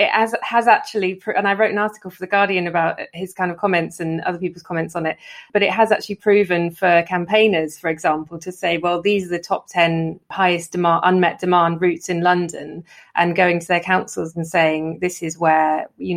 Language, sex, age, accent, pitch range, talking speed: English, female, 20-39, British, 165-185 Hz, 215 wpm